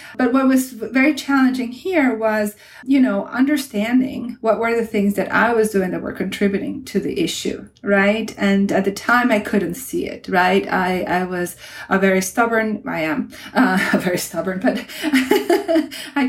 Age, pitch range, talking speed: 30-49, 190-240 Hz, 175 wpm